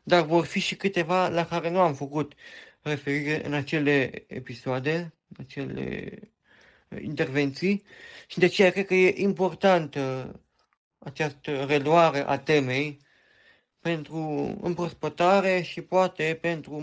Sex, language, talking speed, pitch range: male, Romanian, 120 wpm, 150-180 Hz